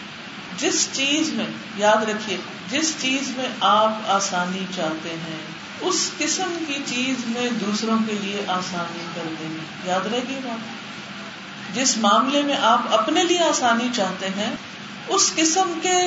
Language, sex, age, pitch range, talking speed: Urdu, female, 50-69, 210-285 Hz, 145 wpm